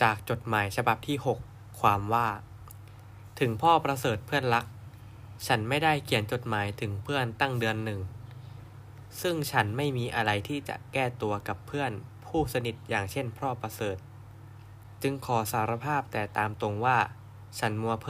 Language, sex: Thai, male